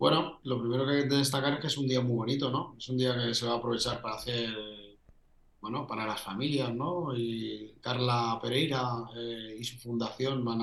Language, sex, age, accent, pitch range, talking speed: Spanish, male, 30-49, Spanish, 110-135 Hz, 220 wpm